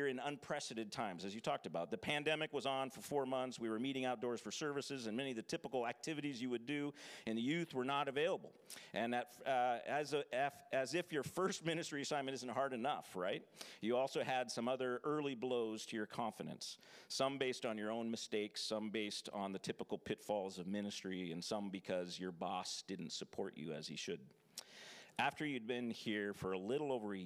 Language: English